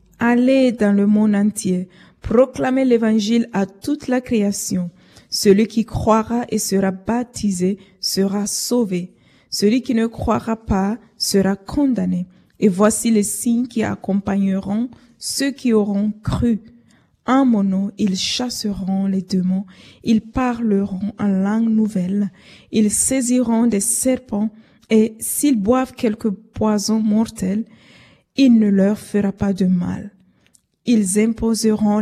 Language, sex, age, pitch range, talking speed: French, female, 20-39, 195-230 Hz, 125 wpm